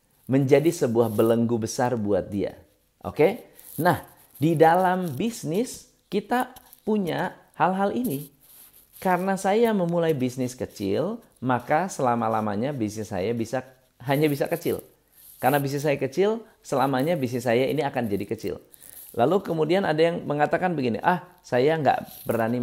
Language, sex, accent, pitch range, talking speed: Indonesian, male, native, 125-195 Hz, 135 wpm